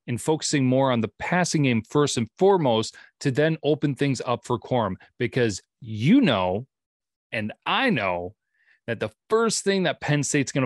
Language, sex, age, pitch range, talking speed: English, male, 30-49, 115-150 Hz, 175 wpm